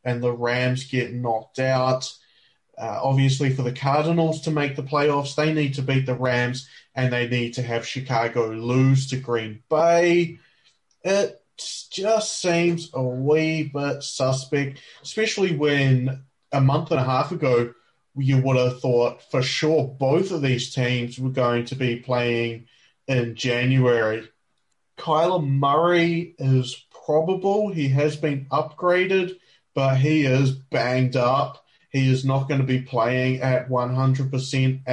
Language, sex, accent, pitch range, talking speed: English, male, Australian, 130-165 Hz, 145 wpm